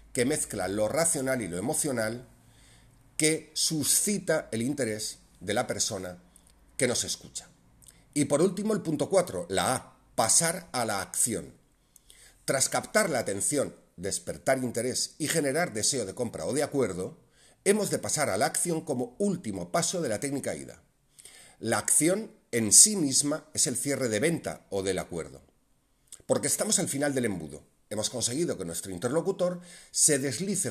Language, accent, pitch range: Spanish, Spanish, 110-165 Hz